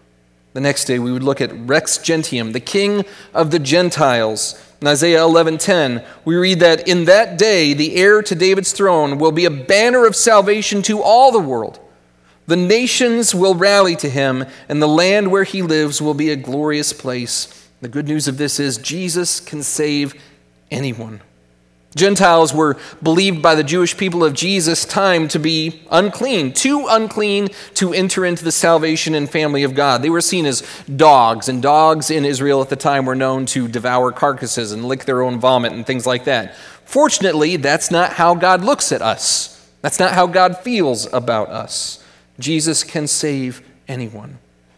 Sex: male